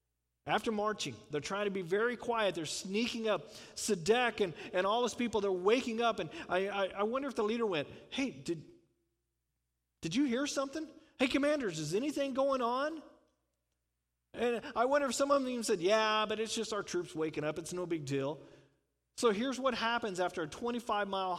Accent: American